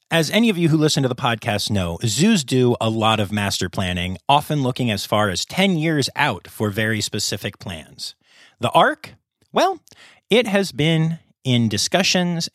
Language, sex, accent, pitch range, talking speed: English, male, American, 105-160 Hz, 175 wpm